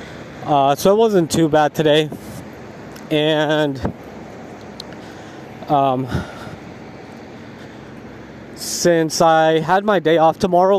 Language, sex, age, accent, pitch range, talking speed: English, male, 20-39, American, 150-185 Hz, 90 wpm